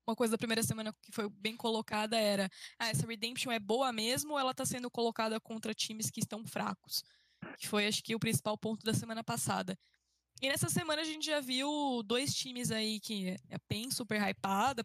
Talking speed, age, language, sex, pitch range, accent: 205 wpm, 10-29, Portuguese, female, 200-235 Hz, Brazilian